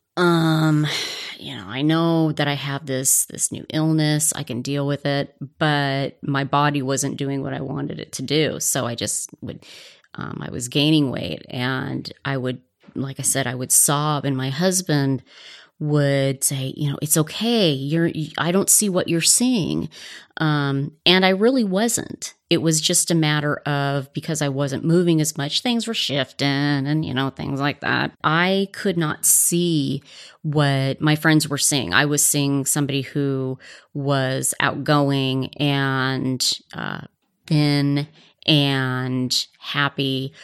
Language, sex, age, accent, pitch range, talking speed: English, female, 30-49, American, 135-155 Hz, 160 wpm